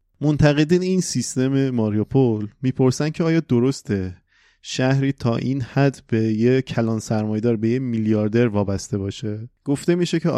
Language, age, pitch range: Persian, 30-49, 105-135 Hz